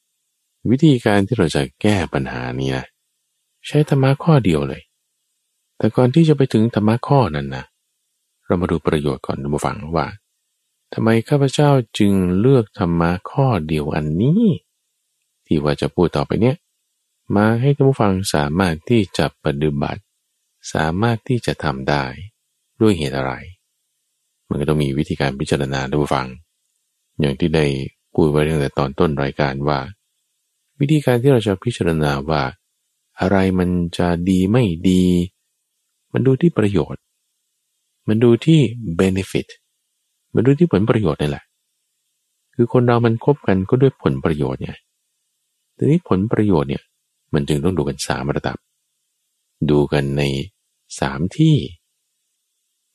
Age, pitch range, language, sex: 20-39, 75-115 Hz, Thai, male